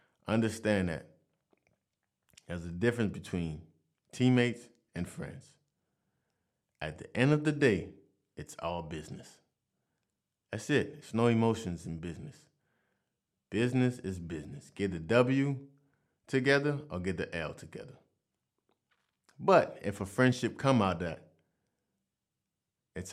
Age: 30-49